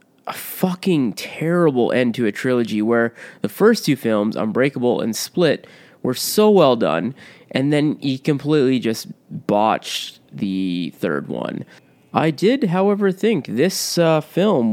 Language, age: English, 20-39